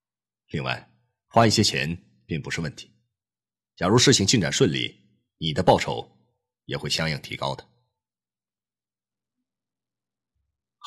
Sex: male